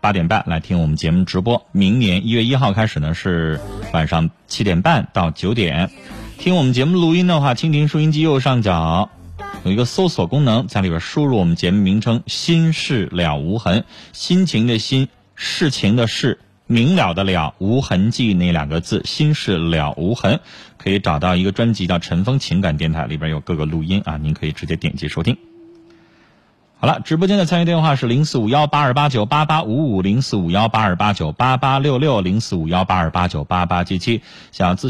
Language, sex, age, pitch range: Chinese, male, 30-49, 90-135 Hz